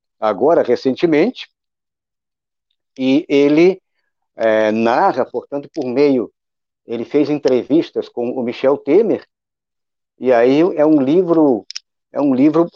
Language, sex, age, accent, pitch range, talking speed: Portuguese, male, 60-79, Brazilian, 120-155 Hz, 100 wpm